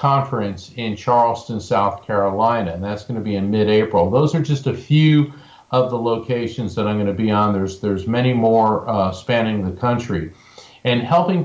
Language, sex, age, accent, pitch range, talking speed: English, male, 50-69, American, 100-120 Hz, 190 wpm